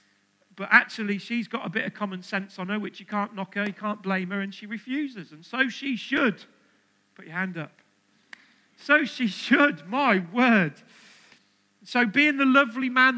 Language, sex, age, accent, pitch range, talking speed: English, male, 40-59, British, 200-250 Hz, 185 wpm